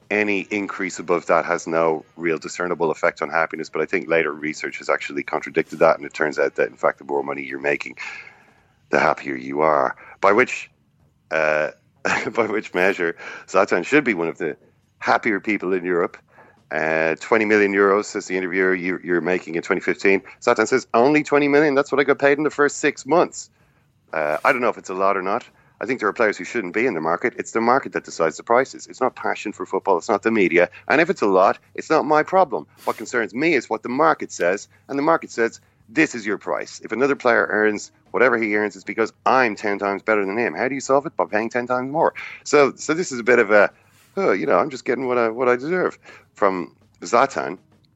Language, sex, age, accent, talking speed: English, male, 40-59, Irish, 235 wpm